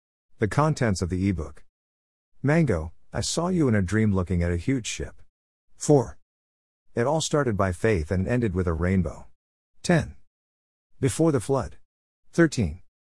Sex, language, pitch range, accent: male, English, 75-115 Hz, American